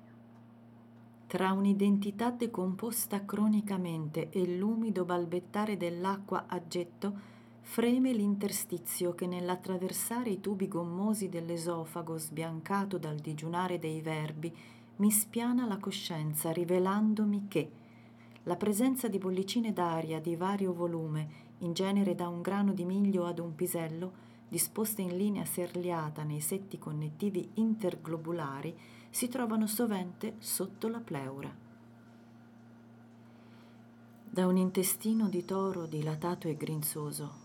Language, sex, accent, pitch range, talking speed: Italian, female, native, 155-205 Hz, 110 wpm